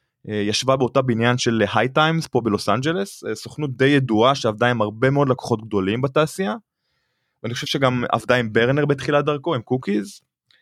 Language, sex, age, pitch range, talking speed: Hebrew, male, 20-39, 115-145 Hz, 165 wpm